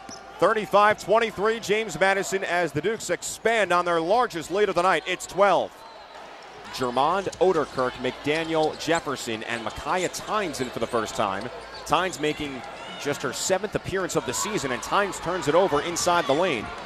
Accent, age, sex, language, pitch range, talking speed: American, 30-49, male, English, 160-205 Hz, 165 wpm